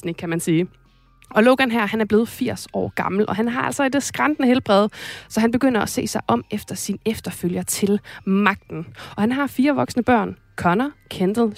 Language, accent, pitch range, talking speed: Danish, native, 195-230 Hz, 200 wpm